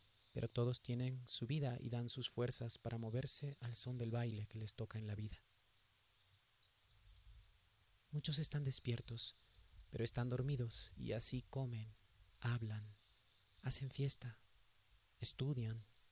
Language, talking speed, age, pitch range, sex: Spanish, 125 wpm, 40-59, 105-125 Hz, male